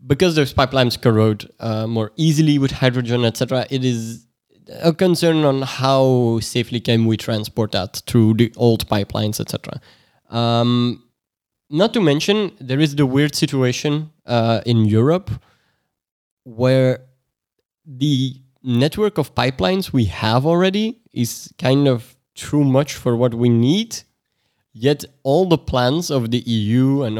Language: English